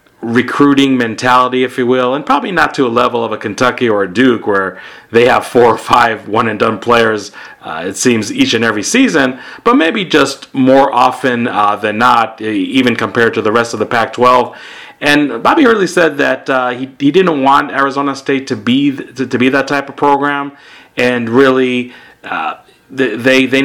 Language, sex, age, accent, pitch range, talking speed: English, male, 40-59, American, 115-135 Hz, 190 wpm